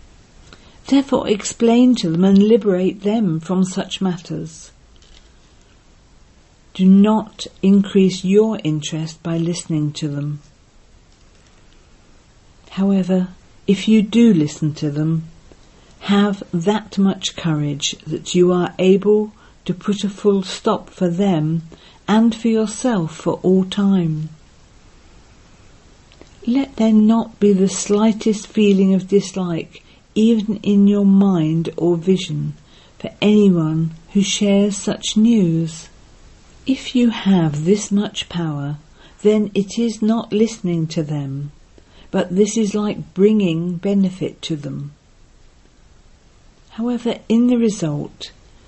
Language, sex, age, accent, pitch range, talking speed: English, female, 50-69, British, 165-215 Hz, 115 wpm